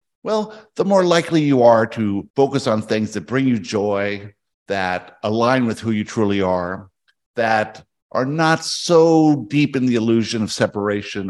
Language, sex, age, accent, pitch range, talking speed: English, male, 50-69, American, 105-145 Hz, 165 wpm